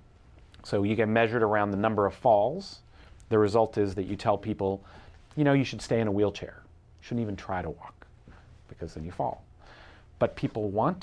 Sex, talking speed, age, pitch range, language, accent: male, 200 wpm, 40-59, 95-115 Hz, English, American